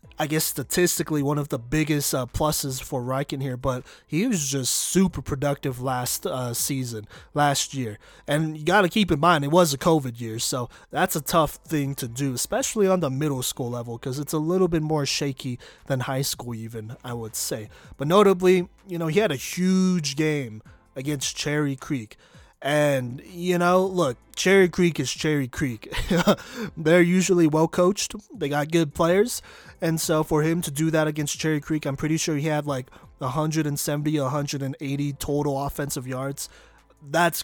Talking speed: 180 wpm